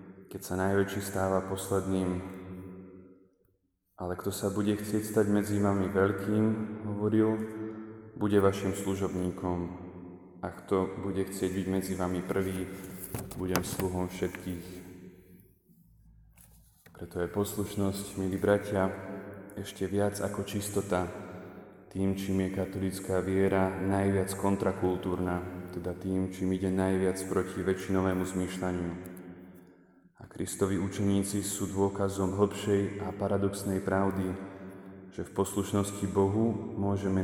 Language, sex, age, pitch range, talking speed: Slovak, male, 20-39, 95-100 Hz, 105 wpm